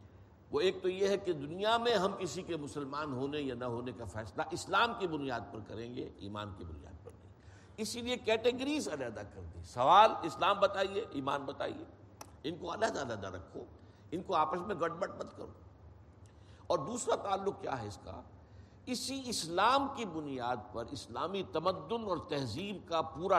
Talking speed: 180 wpm